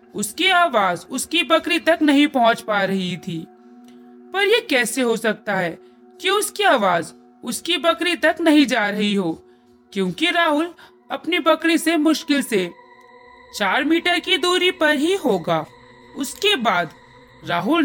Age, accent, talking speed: 40-59, native, 150 wpm